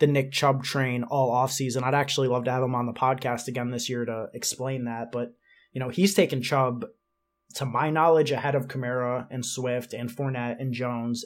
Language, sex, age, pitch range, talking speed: English, male, 20-39, 125-145 Hz, 210 wpm